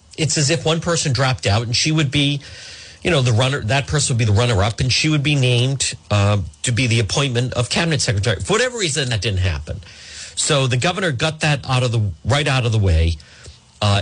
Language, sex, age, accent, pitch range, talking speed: English, male, 50-69, American, 95-145 Hz, 235 wpm